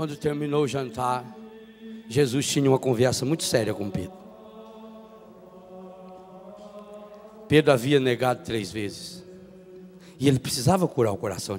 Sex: male